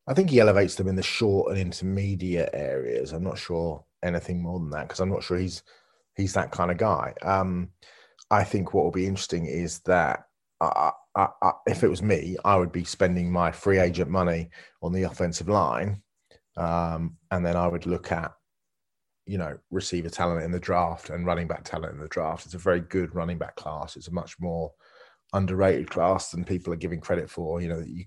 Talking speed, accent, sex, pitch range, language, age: 215 wpm, British, male, 85-95 Hz, English, 30-49